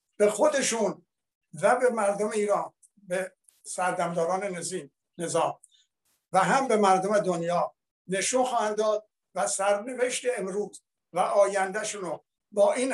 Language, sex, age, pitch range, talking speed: Persian, male, 60-79, 180-215 Hz, 115 wpm